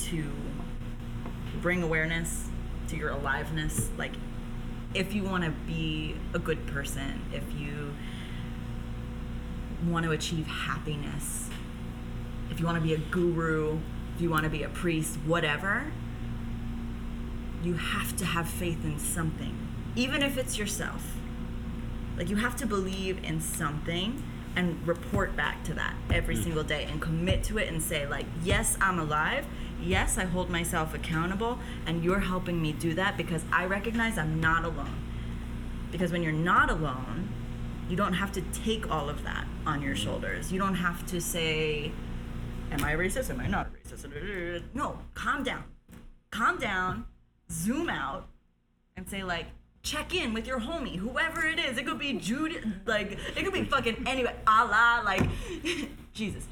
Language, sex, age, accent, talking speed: English, female, 20-39, American, 155 wpm